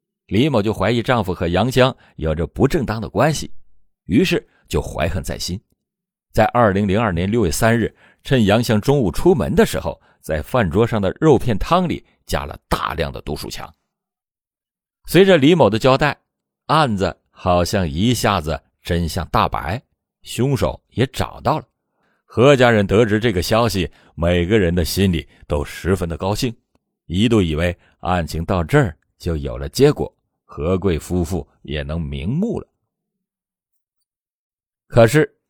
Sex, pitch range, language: male, 85-125 Hz, Chinese